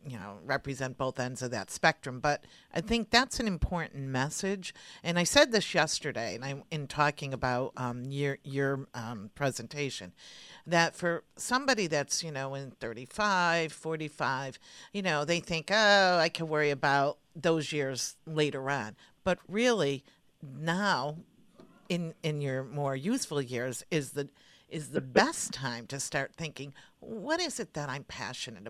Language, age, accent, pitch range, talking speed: English, 50-69, American, 135-175 Hz, 160 wpm